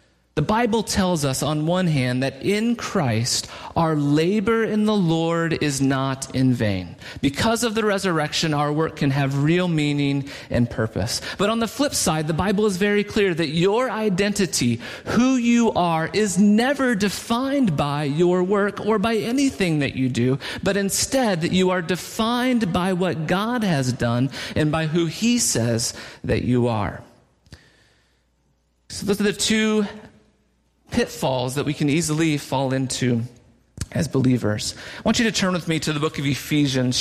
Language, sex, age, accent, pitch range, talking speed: English, male, 40-59, American, 130-200 Hz, 170 wpm